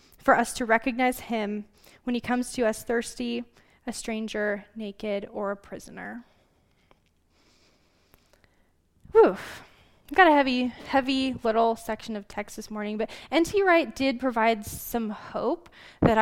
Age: 10-29